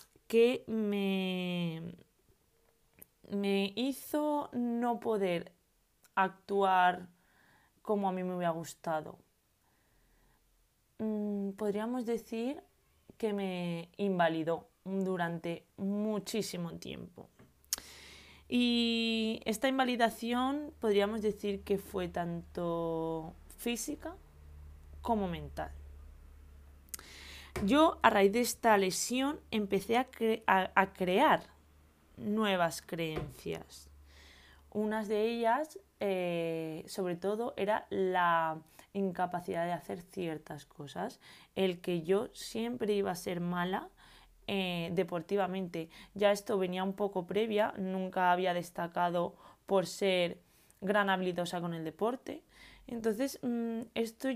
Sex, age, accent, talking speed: female, 20-39, Spanish, 95 wpm